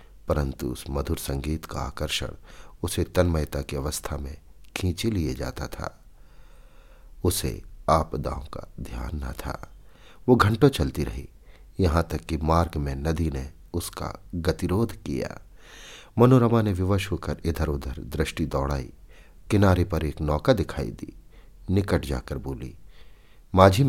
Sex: male